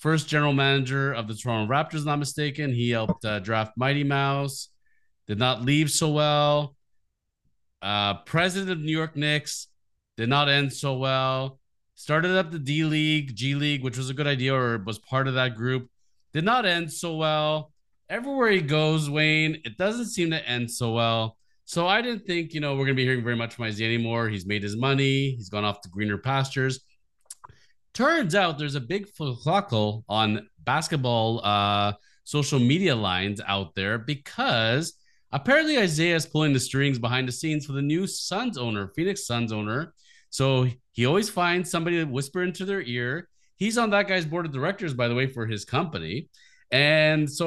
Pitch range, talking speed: 120-160 Hz, 185 wpm